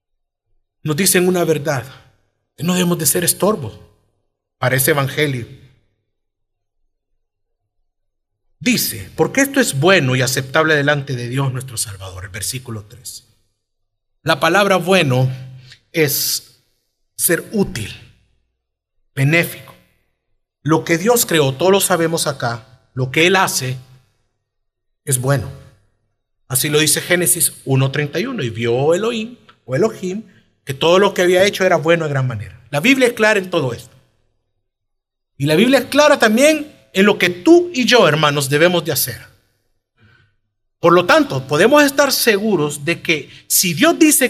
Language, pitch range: Spanish, 115-175 Hz